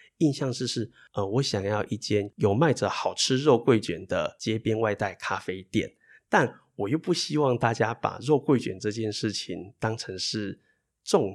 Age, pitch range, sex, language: 20-39, 100-125 Hz, male, Chinese